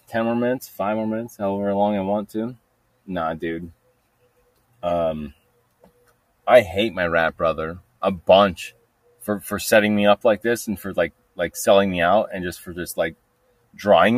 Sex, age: male, 30-49